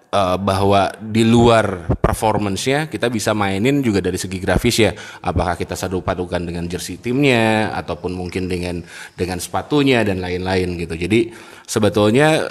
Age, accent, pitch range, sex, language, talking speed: 20-39, native, 90-110 Hz, male, Indonesian, 145 wpm